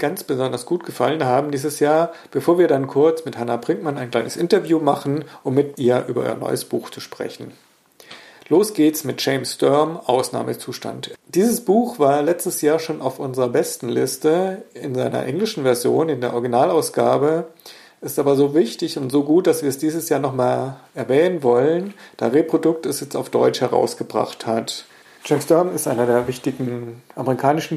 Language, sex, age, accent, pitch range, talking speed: German, male, 50-69, German, 130-160 Hz, 175 wpm